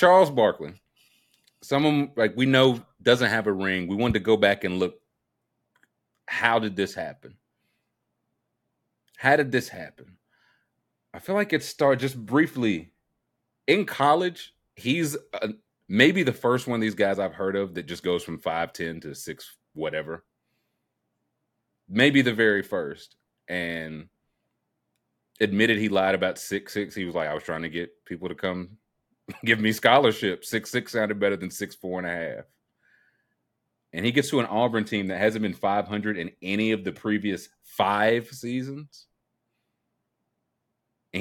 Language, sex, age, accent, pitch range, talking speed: English, male, 30-49, American, 90-120 Hz, 160 wpm